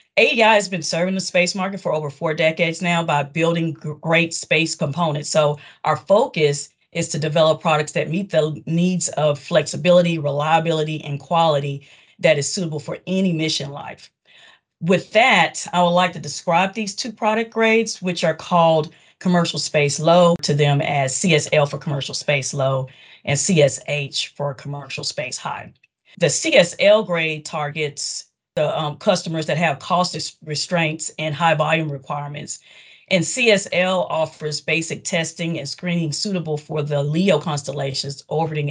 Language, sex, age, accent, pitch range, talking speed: English, female, 40-59, American, 145-180 Hz, 150 wpm